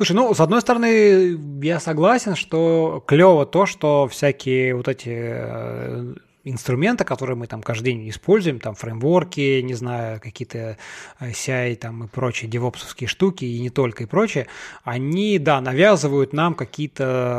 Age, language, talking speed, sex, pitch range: 20-39, Russian, 145 wpm, male, 125-175 Hz